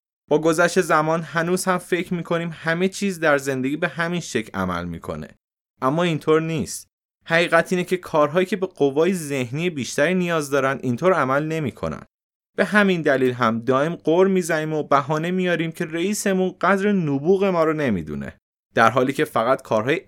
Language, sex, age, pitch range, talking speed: Persian, male, 30-49, 125-180 Hz, 165 wpm